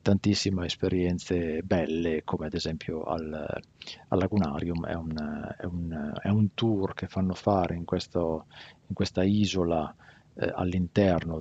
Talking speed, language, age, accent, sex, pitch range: 110 wpm, Italian, 50-69, native, male, 85-100 Hz